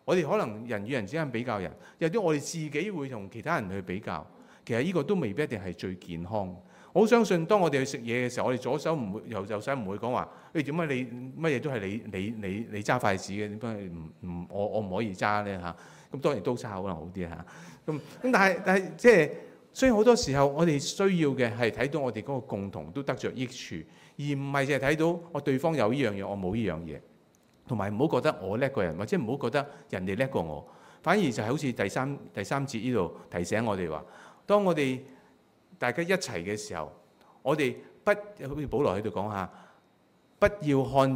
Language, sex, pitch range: Chinese, male, 100-150 Hz